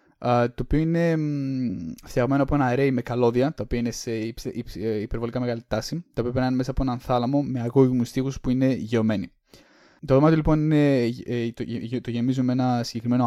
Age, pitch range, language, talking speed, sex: 20-39, 115-135 Hz, Greek, 185 wpm, male